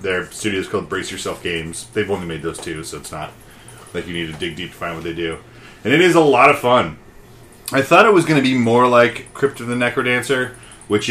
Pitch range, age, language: 95-120 Hz, 30-49, English